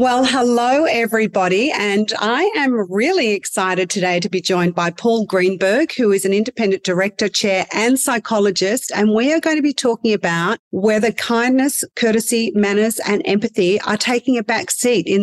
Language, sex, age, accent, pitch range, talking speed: English, female, 40-59, Australian, 185-230 Hz, 170 wpm